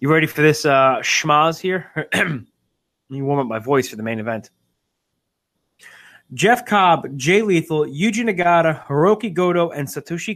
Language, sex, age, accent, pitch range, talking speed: English, male, 20-39, American, 135-170 Hz, 155 wpm